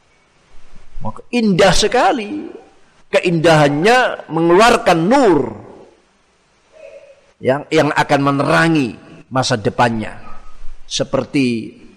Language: Indonesian